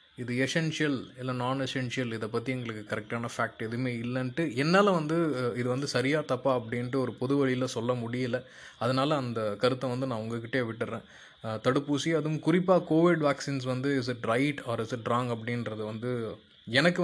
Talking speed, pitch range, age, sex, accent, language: 160 wpm, 110-140 Hz, 20-39, male, native, Tamil